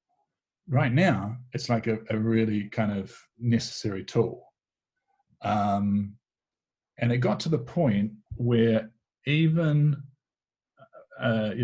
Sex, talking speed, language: male, 115 wpm, English